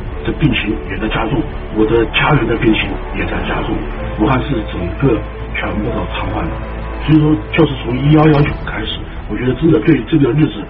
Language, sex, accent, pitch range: Chinese, male, native, 100-120 Hz